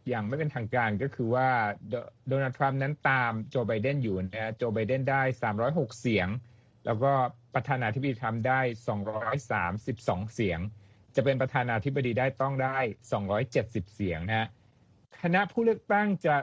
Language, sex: Thai, male